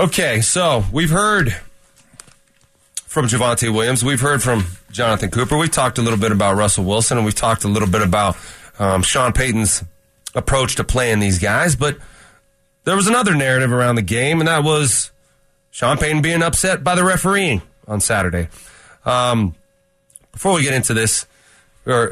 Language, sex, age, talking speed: English, male, 30-49, 170 wpm